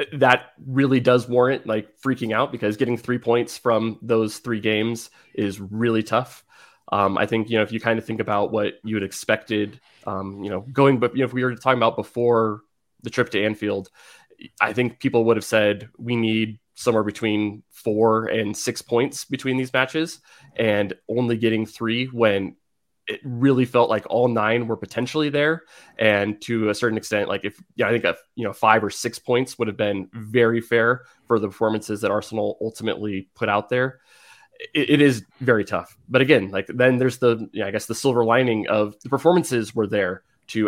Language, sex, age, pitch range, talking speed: English, male, 20-39, 105-125 Hz, 205 wpm